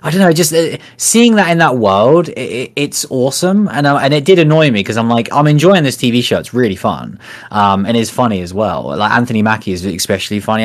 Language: English